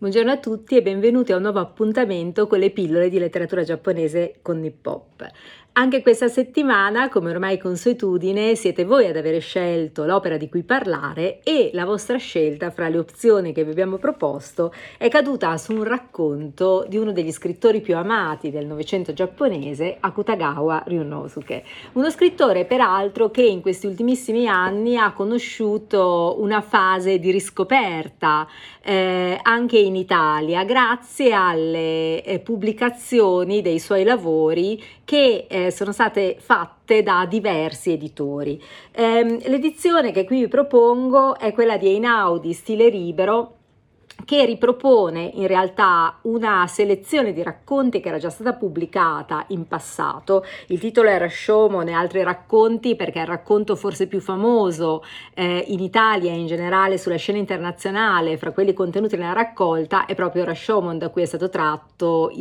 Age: 40-59